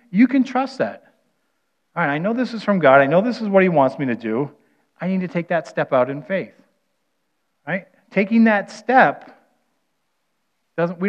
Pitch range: 135-195 Hz